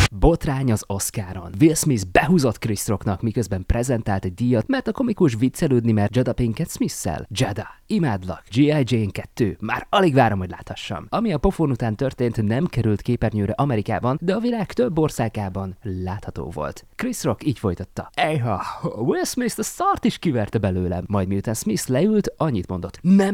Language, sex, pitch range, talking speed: Hungarian, male, 95-140 Hz, 165 wpm